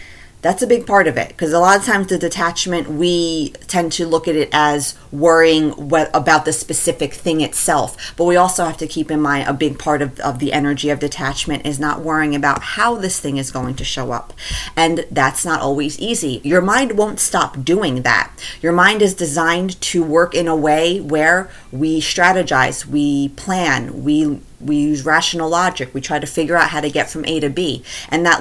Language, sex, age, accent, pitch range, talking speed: English, female, 30-49, American, 145-170 Hz, 210 wpm